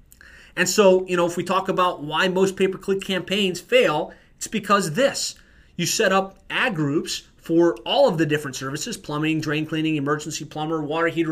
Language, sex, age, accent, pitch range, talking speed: English, male, 30-49, American, 155-190 Hz, 180 wpm